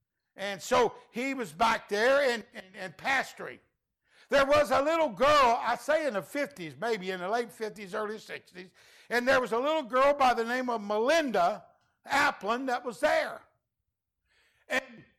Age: 60-79